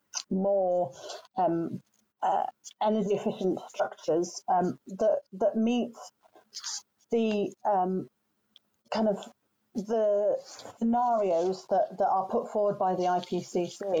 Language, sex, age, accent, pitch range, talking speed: English, female, 30-49, British, 180-210 Hz, 105 wpm